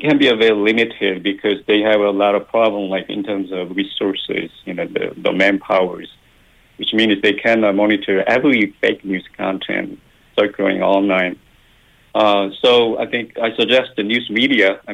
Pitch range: 95-115 Hz